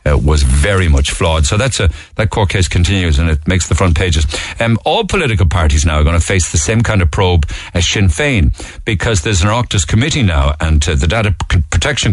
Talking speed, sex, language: 230 wpm, male, English